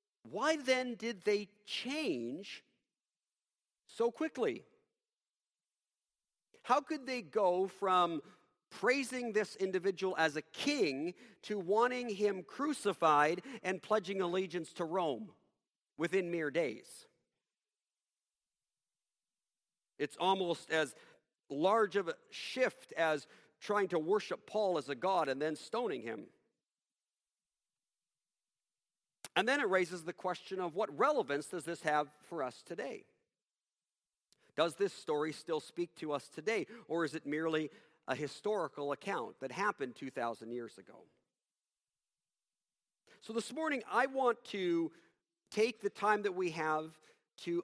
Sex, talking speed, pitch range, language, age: male, 120 wpm, 160-240 Hz, English, 50-69